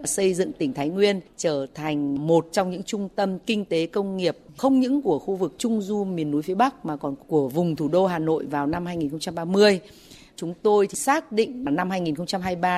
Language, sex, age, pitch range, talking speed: Vietnamese, female, 30-49, 155-215 Hz, 205 wpm